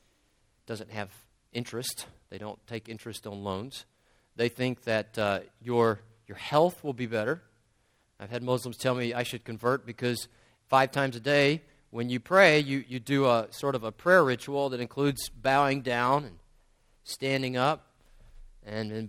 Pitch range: 115-150 Hz